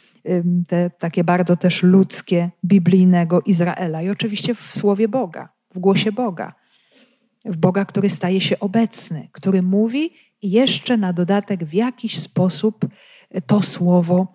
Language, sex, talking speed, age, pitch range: Polish, female, 135 wpm, 40-59, 175-210 Hz